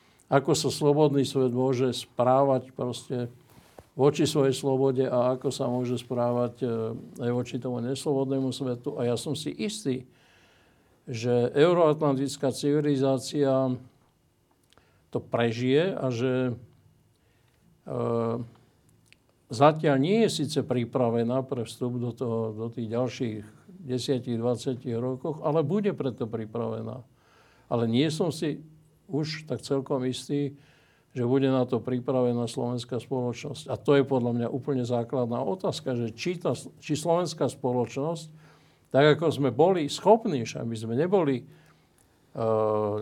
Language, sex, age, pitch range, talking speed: Slovak, male, 60-79, 120-140 Hz, 125 wpm